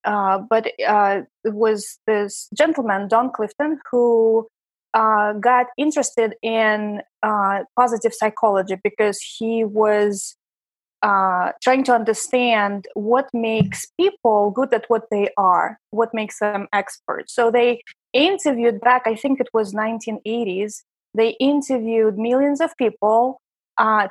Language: English